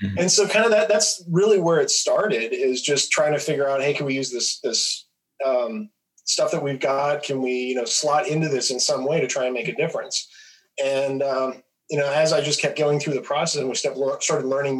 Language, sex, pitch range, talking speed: English, male, 130-150 Hz, 240 wpm